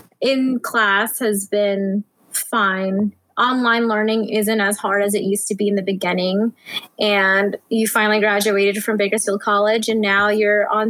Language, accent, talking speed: English, American, 155 wpm